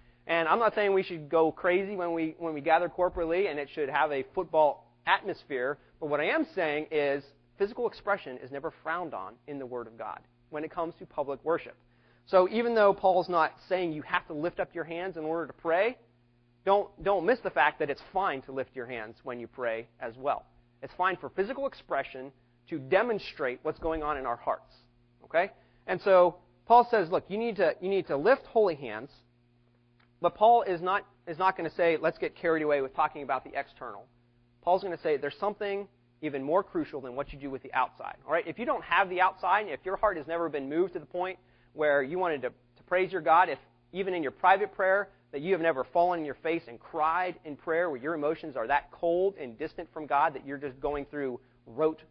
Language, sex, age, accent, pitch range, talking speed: English, male, 30-49, American, 135-185 Hz, 230 wpm